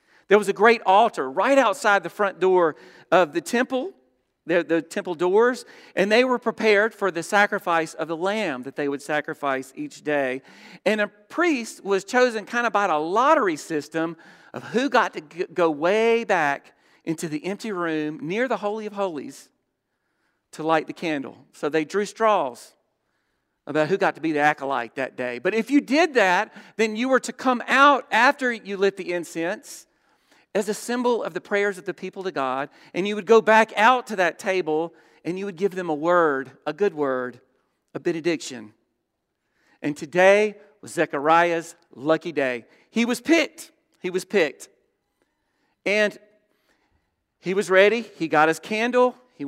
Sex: male